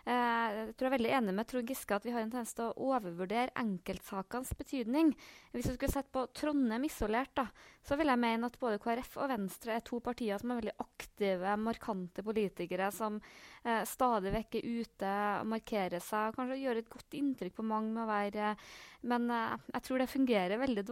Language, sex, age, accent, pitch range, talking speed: English, female, 20-39, Swedish, 200-240 Hz, 200 wpm